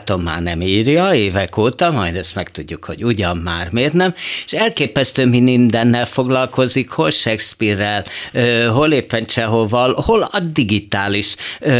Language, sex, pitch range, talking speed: Hungarian, male, 105-145 Hz, 140 wpm